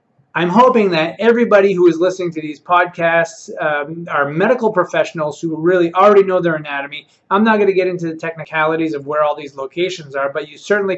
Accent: American